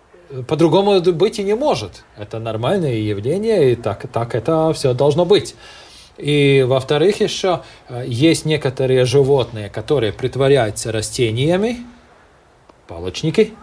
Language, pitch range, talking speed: Russian, 110-150 Hz, 110 wpm